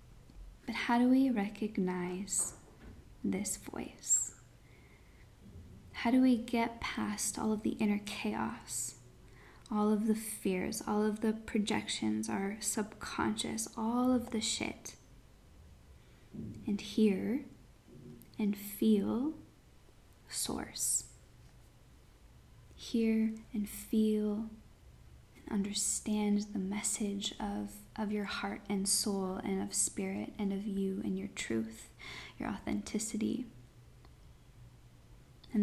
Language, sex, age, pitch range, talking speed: English, female, 10-29, 195-220 Hz, 100 wpm